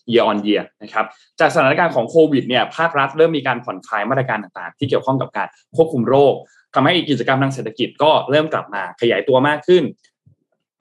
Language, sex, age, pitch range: Thai, male, 20-39, 115-150 Hz